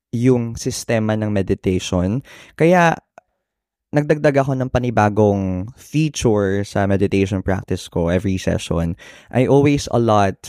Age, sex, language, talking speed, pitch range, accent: 20-39, male, Filipino, 110 wpm, 100-125 Hz, native